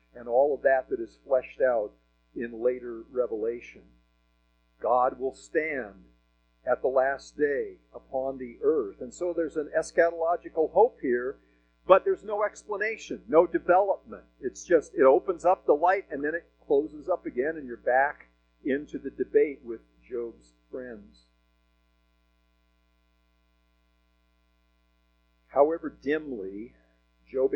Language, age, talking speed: English, 50-69, 130 wpm